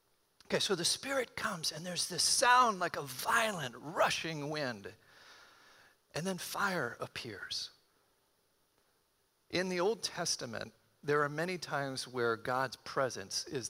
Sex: male